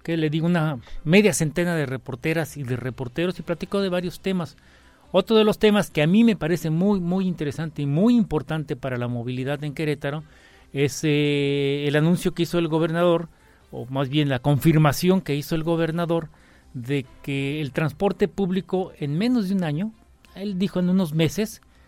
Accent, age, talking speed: Mexican, 40-59, 185 wpm